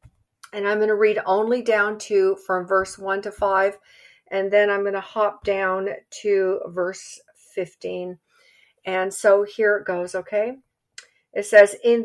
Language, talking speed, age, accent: English, 160 wpm, 50-69, American